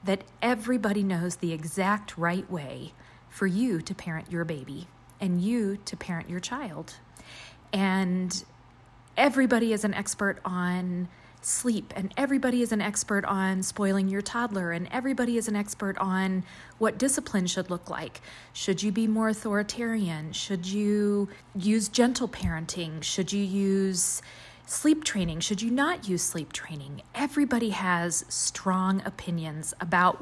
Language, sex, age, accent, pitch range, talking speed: English, female, 30-49, American, 175-220 Hz, 145 wpm